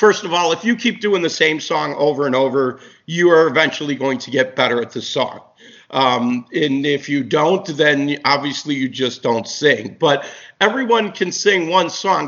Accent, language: American, English